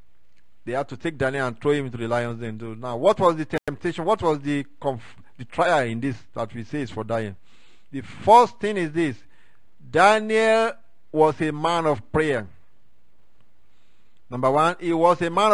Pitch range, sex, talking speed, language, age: 125-170 Hz, male, 185 wpm, English, 50-69